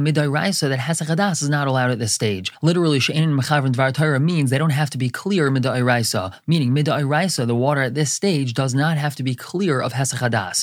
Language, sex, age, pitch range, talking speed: English, male, 20-39, 125-155 Hz, 205 wpm